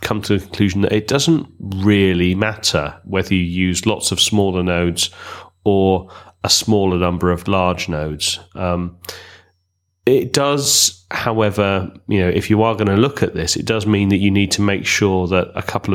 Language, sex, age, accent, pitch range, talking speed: English, male, 30-49, British, 90-100 Hz, 185 wpm